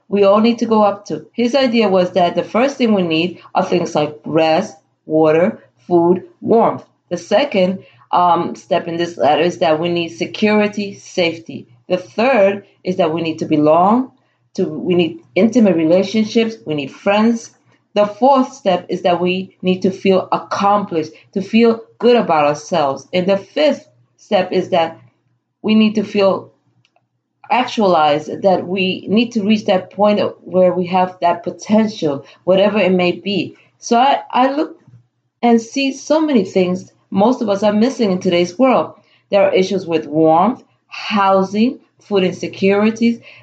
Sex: female